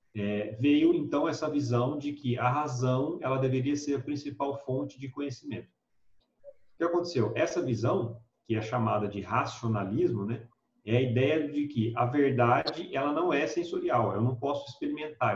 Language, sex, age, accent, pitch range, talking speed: Portuguese, male, 40-59, Brazilian, 115-145 Hz, 170 wpm